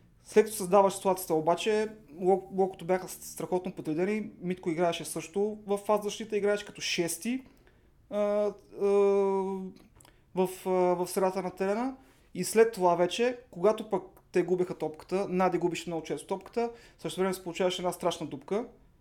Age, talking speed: 30-49, 140 wpm